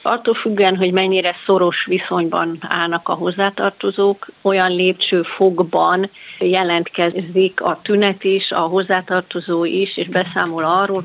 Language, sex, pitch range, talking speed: Hungarian, female, 170-190 Hz, 120 wpm